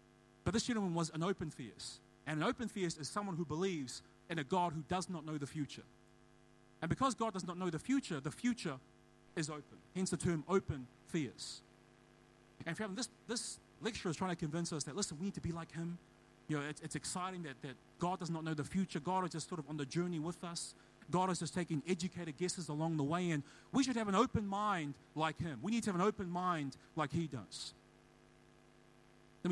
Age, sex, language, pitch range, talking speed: 30-49, male, English, 150-185 Hz, 225 wpm